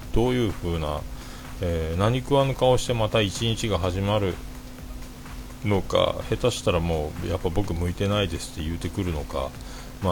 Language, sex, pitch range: Japanese, male, 80-110 Hz